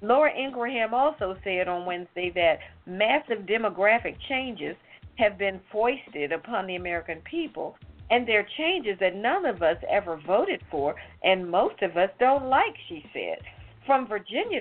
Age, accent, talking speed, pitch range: 50-69, American, 150 wpm, 205-285 Hz